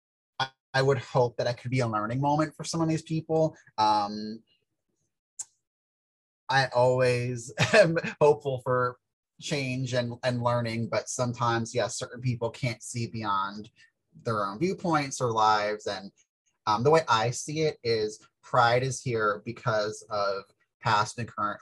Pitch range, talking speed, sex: 110-145 Hz, 150 wpm, male